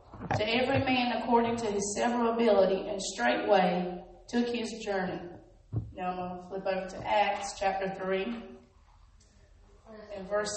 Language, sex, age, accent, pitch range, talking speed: English, female, 30-49, American, 170-210 Hz, 175 wpm